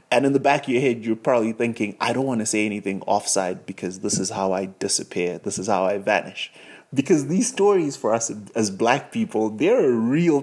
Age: 20-39